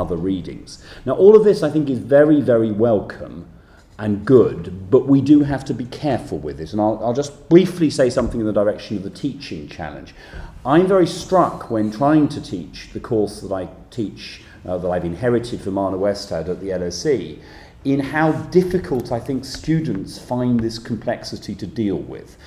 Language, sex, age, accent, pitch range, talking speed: English, male, 40-59, British, 90-125 Hz, 190 wpm